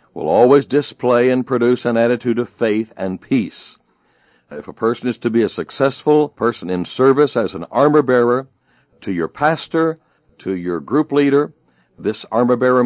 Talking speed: 160 wpm